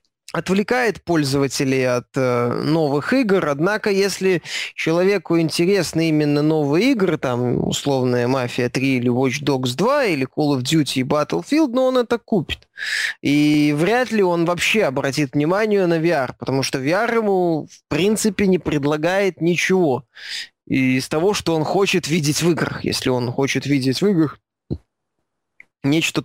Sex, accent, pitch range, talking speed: male, native, 140-185 Hz, 150 wpm